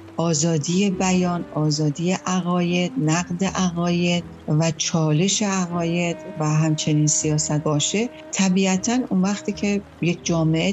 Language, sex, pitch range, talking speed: English, female, 160-200 Hz, 100 wpm